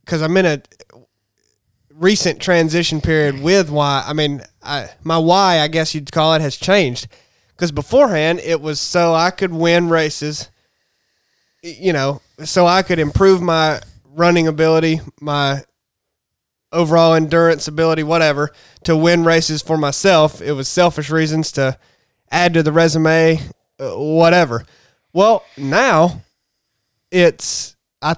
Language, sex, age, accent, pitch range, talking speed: English, male, 20-39, American, 140-170 Hz, 130 wpm